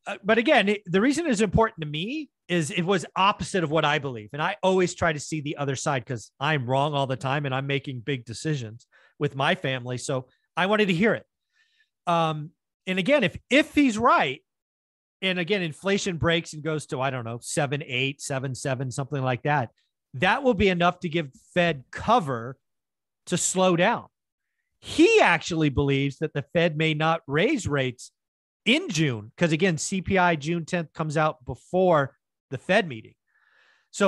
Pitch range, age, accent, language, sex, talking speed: 140-185 Hz, 30-49, American, English, male, 190 wpm